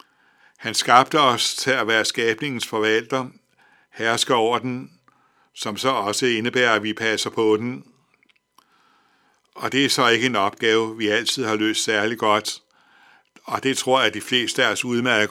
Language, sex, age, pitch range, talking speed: Danish, male, 60-79, 110-125 Hz, 170 wpm